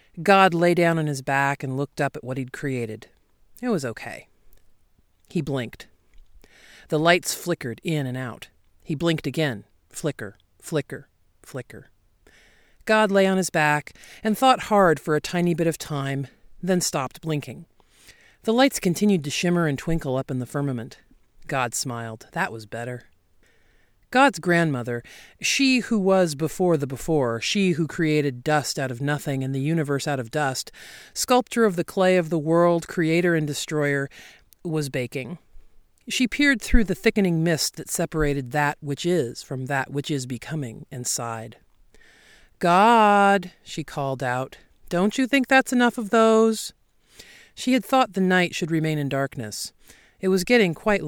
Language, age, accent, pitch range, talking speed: English, 40-59, American, 135-185 Hz, 160 wpm